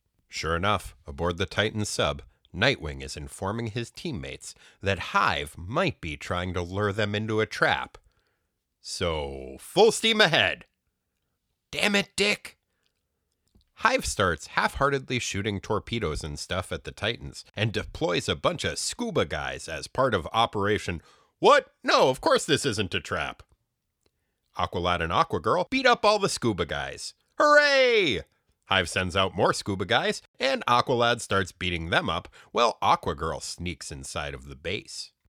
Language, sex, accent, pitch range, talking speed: English, male, American, 85-125 Hz, 150 wpm